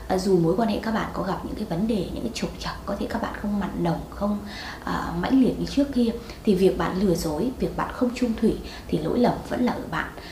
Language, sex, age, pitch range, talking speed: Vietnamese, female, 20-39, 185-250 Hz, 275 wpm